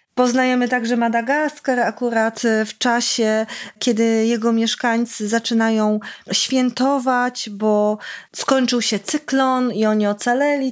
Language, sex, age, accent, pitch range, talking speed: Polish, female, 30-49, native, 210-260 Hz, 100 wpm